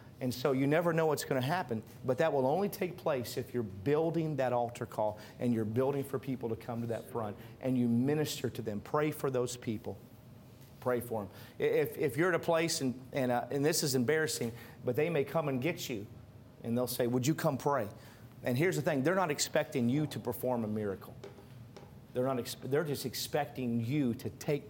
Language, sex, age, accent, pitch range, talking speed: English, male, 40-59, American, 115-145 Hz, 220 wpm